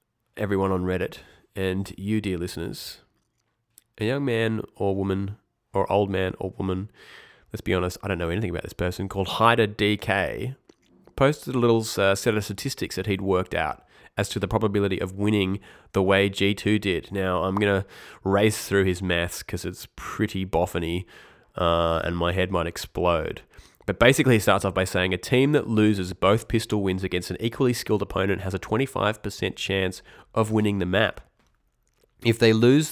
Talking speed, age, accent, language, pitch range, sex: 180 wpm, 20-39, Australian, English, 95-115 Hz, male